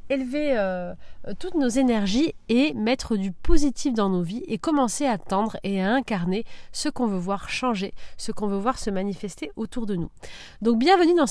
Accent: French